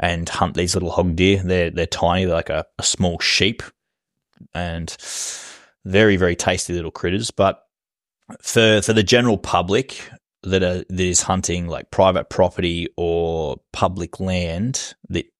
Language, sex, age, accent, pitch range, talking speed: English, male, 20-39, Australian, 85-95 Hz, 150 wpm